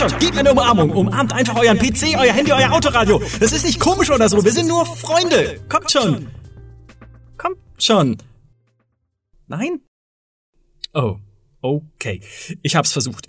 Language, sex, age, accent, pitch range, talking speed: German, male, 30-49, German, 130-200 Hz, 150 wpm